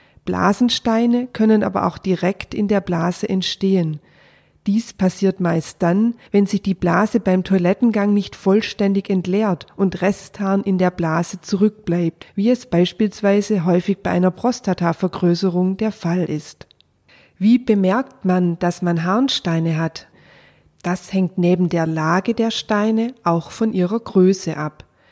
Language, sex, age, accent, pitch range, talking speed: German, female, 40-59, German, 175-205 Hz, 135 wpm